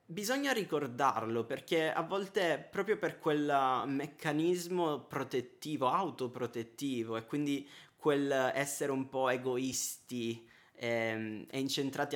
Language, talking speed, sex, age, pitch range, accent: Italian, 105 wpm, male, 20-39, 120-160 Hz, native